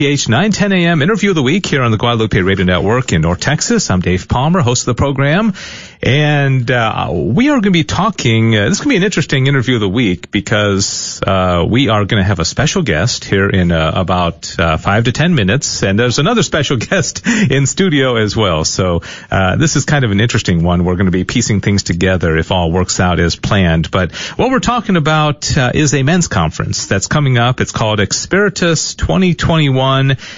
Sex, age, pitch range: male, 40-59, 100-145 Hz